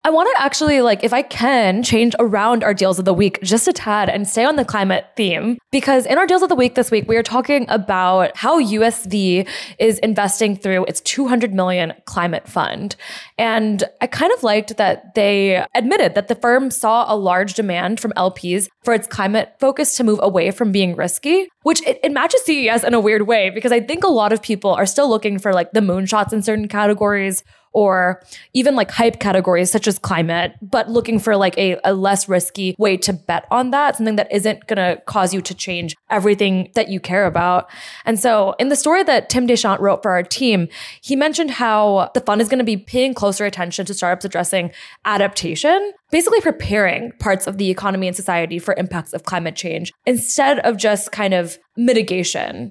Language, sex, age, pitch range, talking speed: English, female, 20-39, 190-245 Hz, 205 wpm